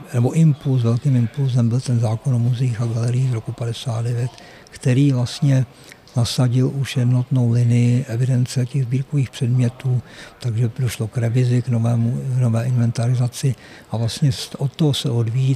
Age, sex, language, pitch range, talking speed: 50-69, male, Czech, 120-135 Hz, 150 wpm